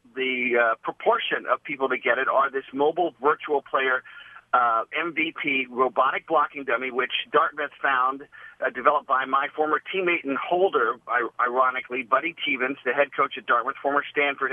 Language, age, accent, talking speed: English, 50-69, American, 160 wpm